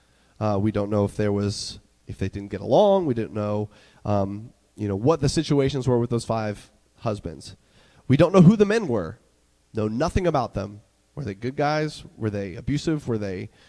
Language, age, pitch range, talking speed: English, 30-49, 110-155 Hz, 200 wpm